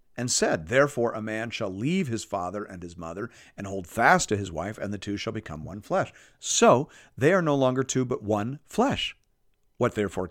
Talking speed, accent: 210 wpm, American